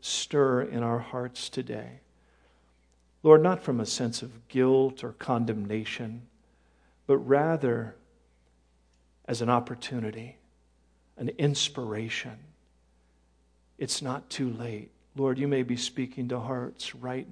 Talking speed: 115 wpm